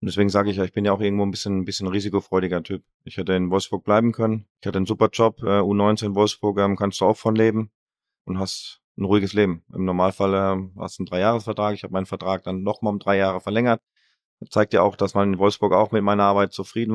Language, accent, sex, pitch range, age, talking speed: German, German, male, 95-110 Hz, 30-49, 255 wpm